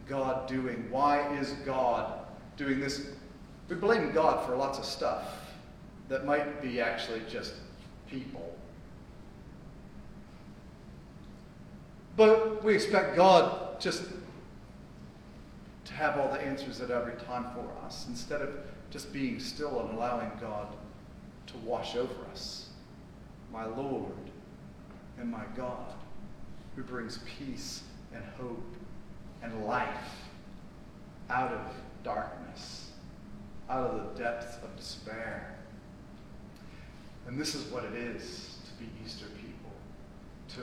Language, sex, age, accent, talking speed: English, male, 40-59, American, 115 wpm